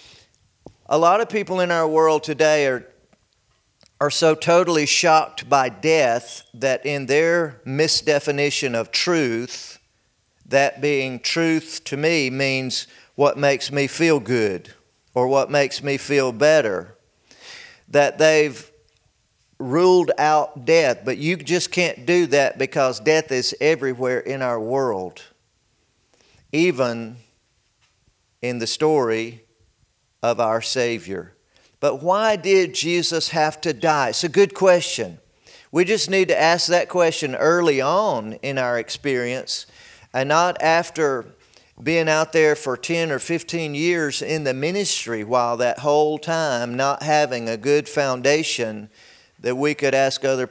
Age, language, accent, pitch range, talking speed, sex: 40-59, English, American, 125-165 Hz, 135 wpm, male